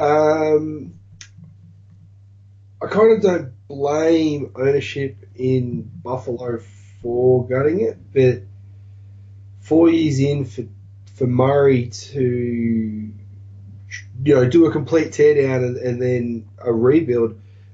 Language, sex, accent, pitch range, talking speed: English, male, Australian, 105-130 Hz, 105 wpm